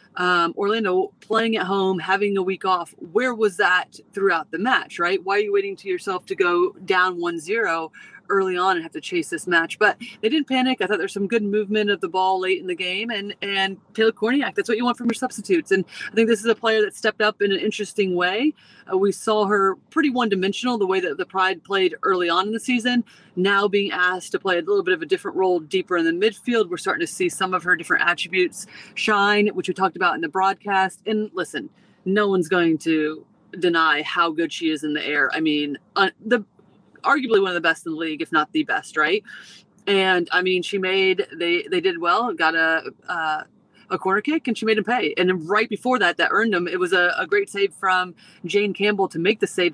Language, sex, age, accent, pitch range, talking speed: English, female, 30-49, American, 180-230 Hz, 240 wpm